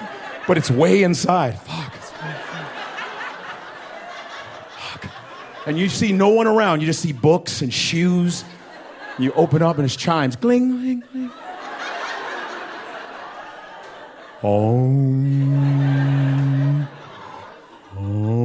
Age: 40-59